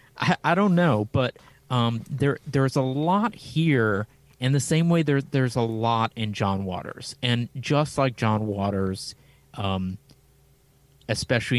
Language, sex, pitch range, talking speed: English, male, 105-135 Hz, 145 wpm